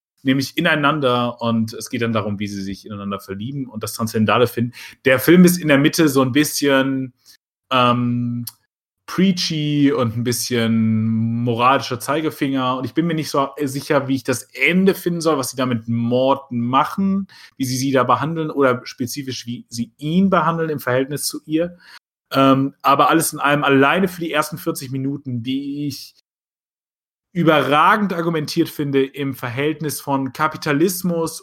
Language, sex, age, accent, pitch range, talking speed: German, male, 30-49, German, 120-150 Hz, 165 wpm